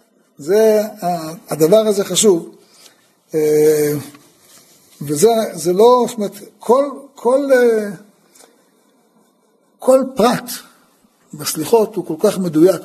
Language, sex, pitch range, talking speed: Hebrew, male, 165-230 Hz, 75 wpm